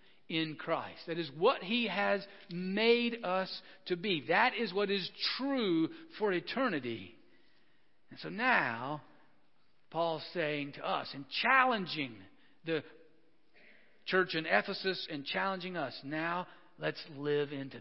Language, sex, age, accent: English, male, 50-69, American